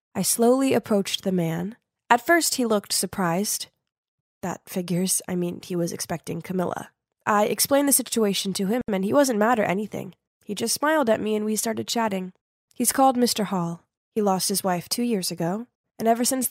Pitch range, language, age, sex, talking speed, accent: 185-235 Hz, English, 20-39, female, 195 wpm, American